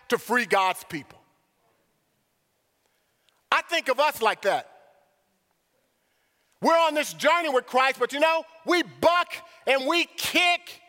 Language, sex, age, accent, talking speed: English, male, 40-59, American, 130 wpm